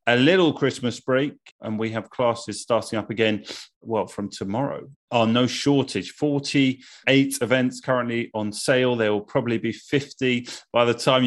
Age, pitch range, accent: 30-49, 105-125 Hz, British